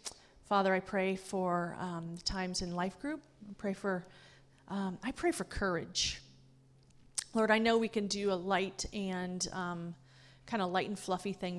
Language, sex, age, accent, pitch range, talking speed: English, female, 30-49, American, 180-205 Hz, 150 wpm